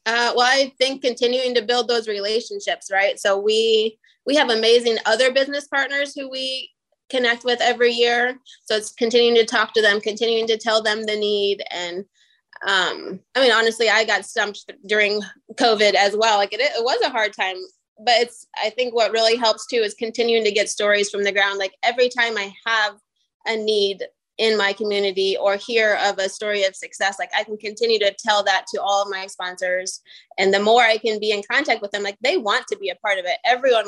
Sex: female